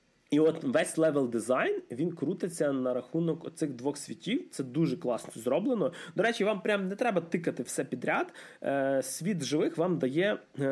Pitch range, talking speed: 135-185 Hz, 155 wpm